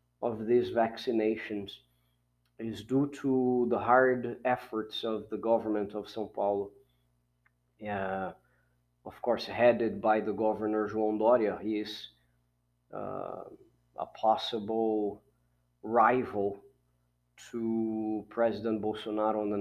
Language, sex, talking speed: English, male, 105 wpm